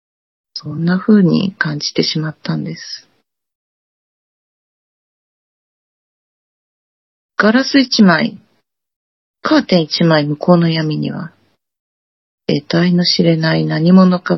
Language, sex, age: Japanese, female, 40-59